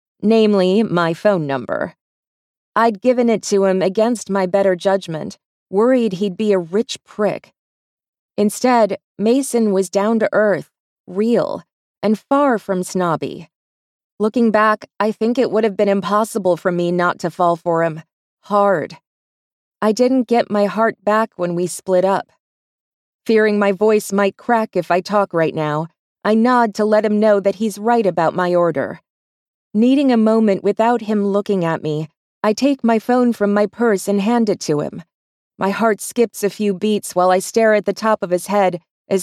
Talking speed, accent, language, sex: 175 wpm, American, English, female